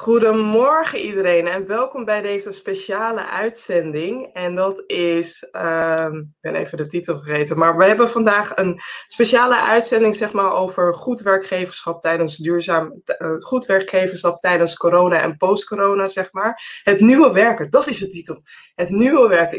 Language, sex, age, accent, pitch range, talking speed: English, female, 20-39, Dutch, 170-220 Hz, 160 wpm